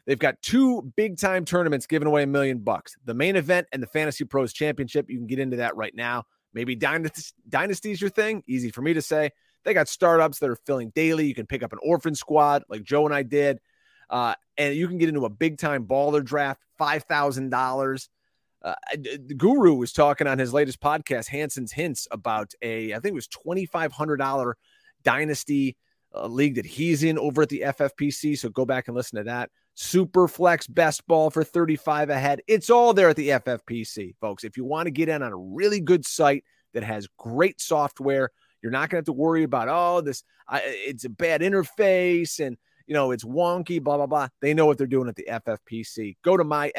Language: English